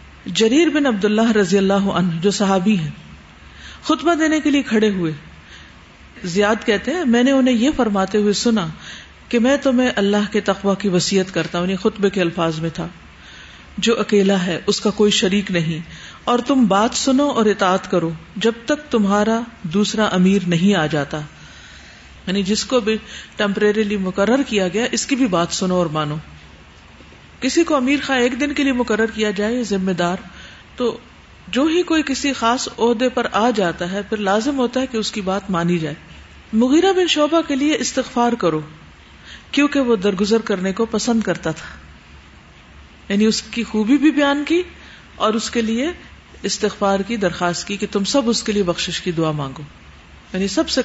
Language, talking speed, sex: Urdu, 185 wpm, female